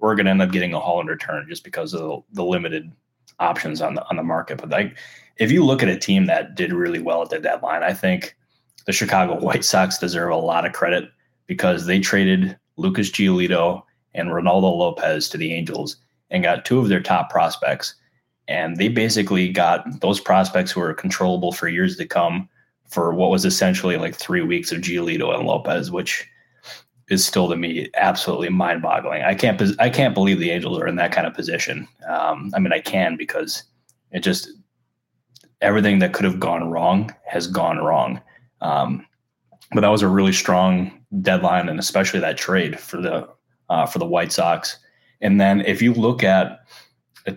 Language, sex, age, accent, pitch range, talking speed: English, male, 20-39, American, 90-130 Hz, 195 wpm